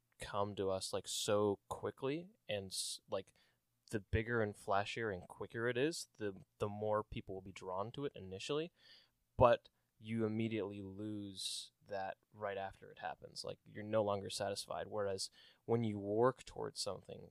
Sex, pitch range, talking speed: male, 100-115 Hz, 160 wpm